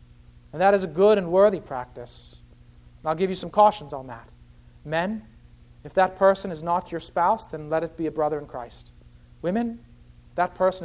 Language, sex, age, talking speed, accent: English, male, 40-59, 200 wpm, American